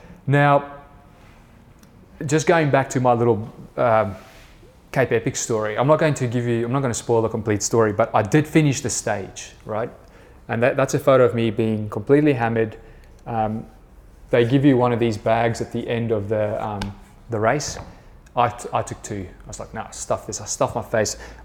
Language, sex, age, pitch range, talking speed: English, male, 20-39, 110-135 Hz, 210 wpm